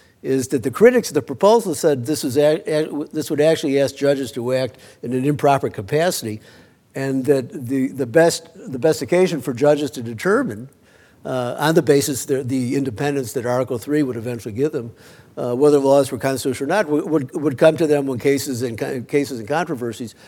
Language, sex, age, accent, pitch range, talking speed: English, male, 60-79, American, 130-155 Hz, 200 wpm